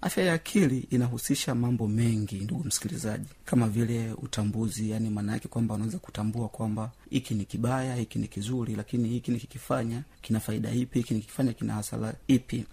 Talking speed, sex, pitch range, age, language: 155 wpm, male, 115-135 Hz, 40-59, Swahili